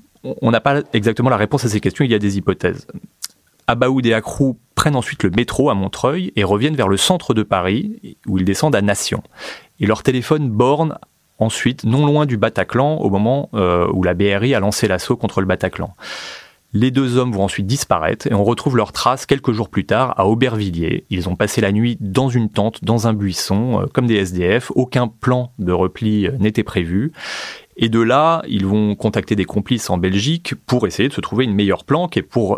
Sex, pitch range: male, 100-130 Hz